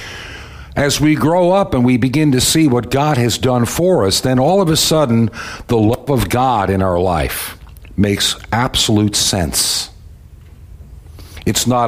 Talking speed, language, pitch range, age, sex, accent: 160 wpm, English, 85-120 Hz, 60-79, male, American